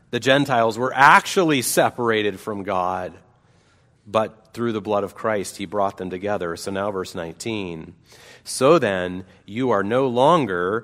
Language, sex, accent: English, male, American